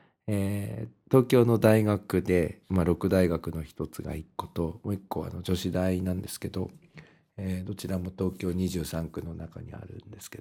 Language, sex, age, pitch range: Japanese, male, 50-69, 85-115 Hz